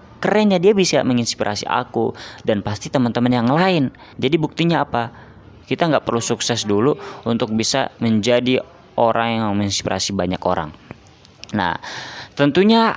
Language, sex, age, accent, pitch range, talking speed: Indonesian, female, 20-39, native, 105-130 Hz, 135 wpm